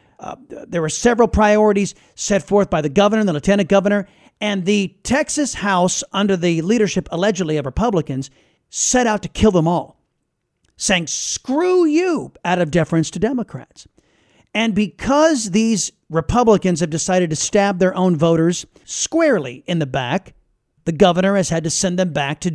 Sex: male